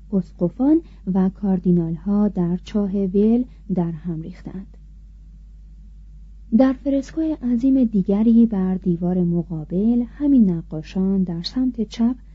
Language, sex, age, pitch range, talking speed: Persian, female, 30-49, 175-225 Hz, 100 wpm